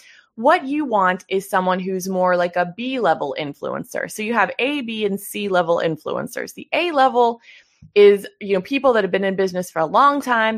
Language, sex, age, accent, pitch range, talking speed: English, female, 20-39, American, 180-245 Hz, 210 wpm